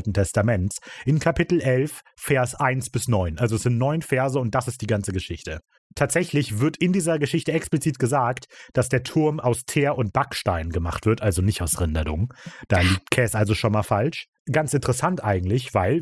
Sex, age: male, 30-49